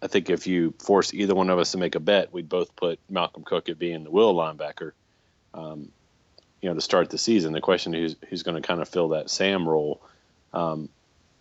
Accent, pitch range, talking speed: American, 80-100 Hz, 225 wpm